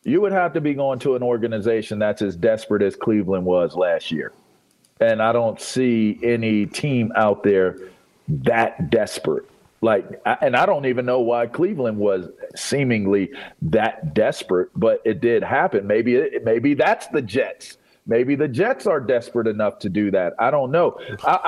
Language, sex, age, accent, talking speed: English, male, 40-59, American, 170 wpm